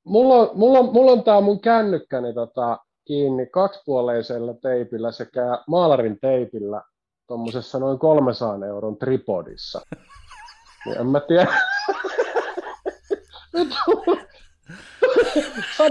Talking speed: 80 wpm